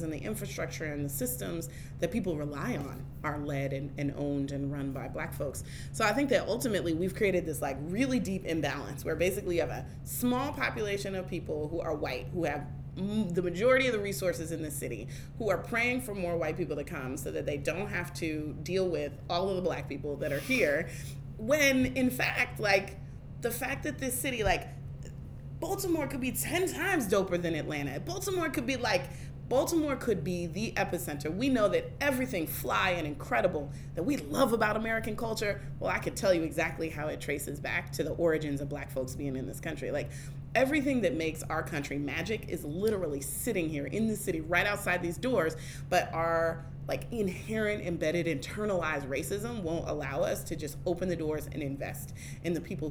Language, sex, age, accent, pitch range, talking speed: English, female, 30-49, American, 140-190 Hz, 200 wpm